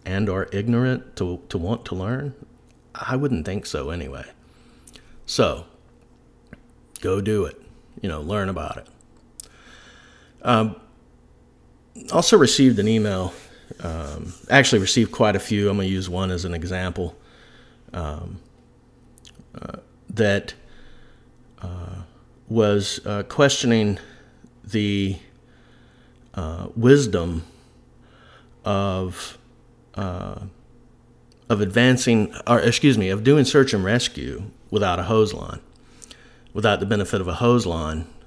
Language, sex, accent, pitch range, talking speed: English, male, American, 85-110 Hz, 115 wpm